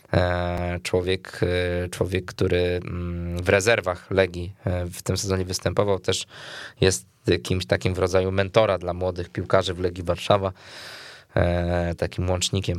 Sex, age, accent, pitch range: male, 20-39, native, 90-100 Hz